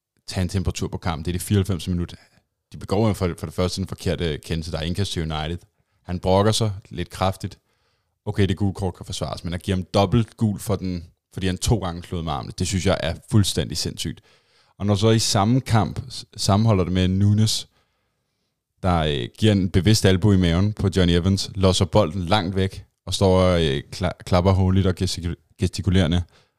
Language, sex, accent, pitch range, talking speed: Danish, male, native, 90-100 Hz, 200 wpm